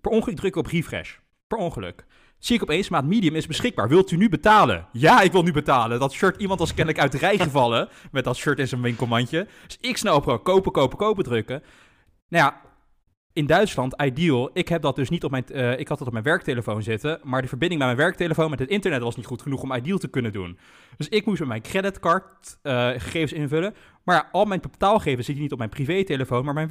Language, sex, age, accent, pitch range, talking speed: Dutch, male, 20-39, Dutch, 125-190 Hz, 235 wpm